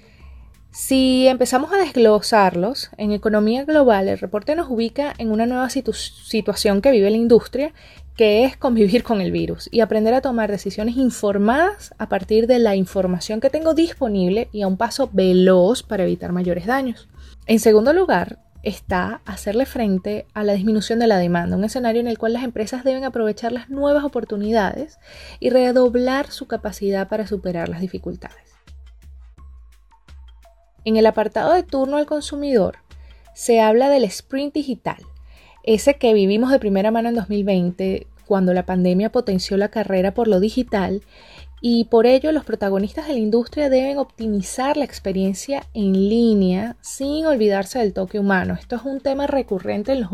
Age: 20-39